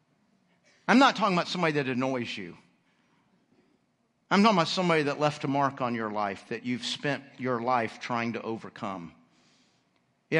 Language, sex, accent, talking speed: English, male, American, 160 wpm